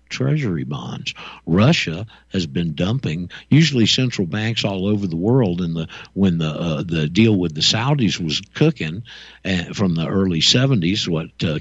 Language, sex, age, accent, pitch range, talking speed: English, male, 50-69, American, 85-125 Hz, 160 wpm